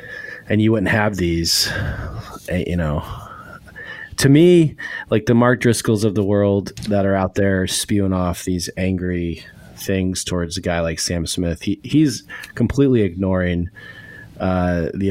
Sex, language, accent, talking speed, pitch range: male, English, American, 145 wpm, 85-100 Hz